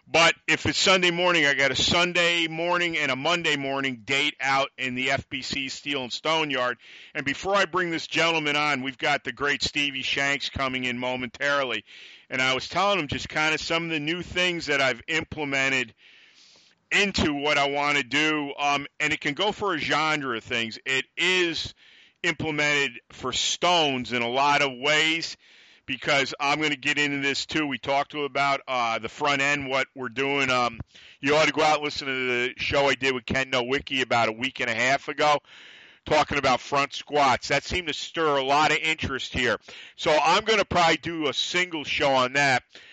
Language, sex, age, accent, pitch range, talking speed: English, male, 50-69, American, 135-160 Hz, 205 wpm